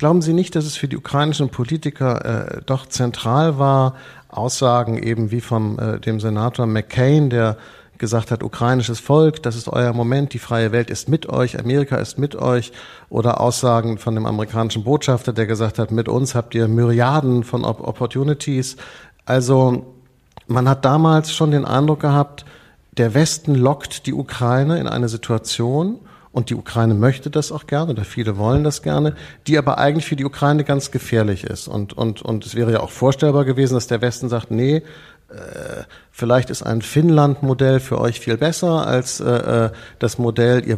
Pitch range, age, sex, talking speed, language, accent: 115-140 Hz, 50-69, male, 175 wpm, German, German